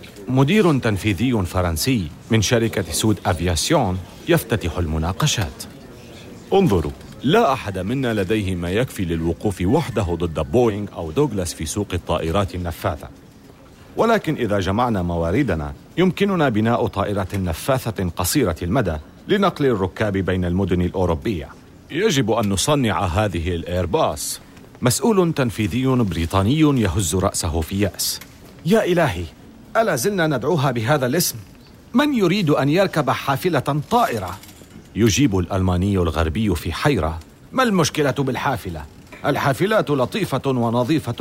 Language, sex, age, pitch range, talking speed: Arabic, male, 40-59, 90-135 Hz, 110 wpm